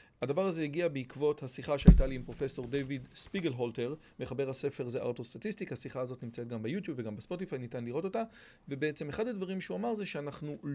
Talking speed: 180 wpm